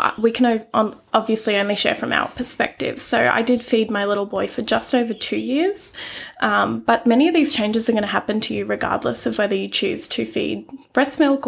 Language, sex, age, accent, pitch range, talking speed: English, female, 20-39, Australian, 205-255 Hz, 215 wpm